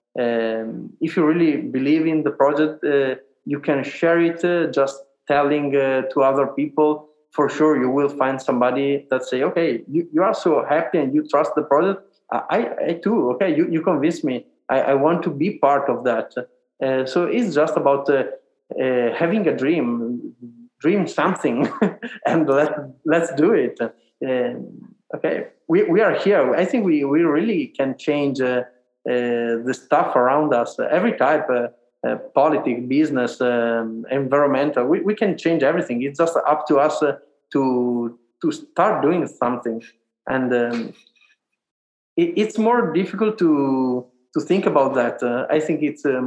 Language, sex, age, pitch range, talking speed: English, male, 20-39, 125-160 Hz, 170 wpm